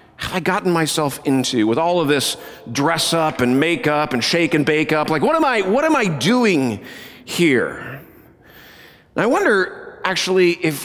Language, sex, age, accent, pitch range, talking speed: English, male, 40-59, American, 145-195 Hz, 165 wpm